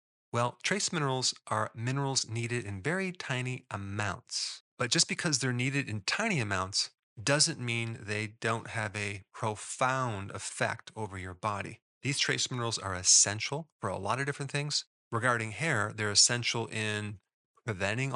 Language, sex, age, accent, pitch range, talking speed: English, male, 30-49, American, 100-125 Hz, 150 wpm